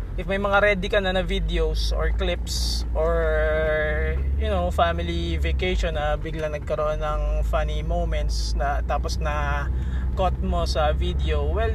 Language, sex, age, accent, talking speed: Filipino, male, 20-39, native, 155 wpm